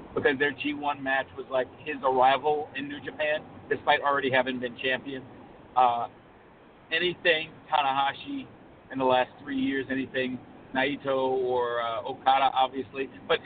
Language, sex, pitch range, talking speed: English, male, 130-145 Hz, 140 wpm